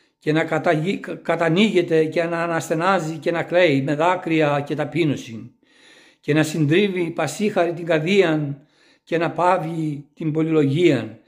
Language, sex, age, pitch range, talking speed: Greek, male, 60-79, 155-180 Hz, 135 wpm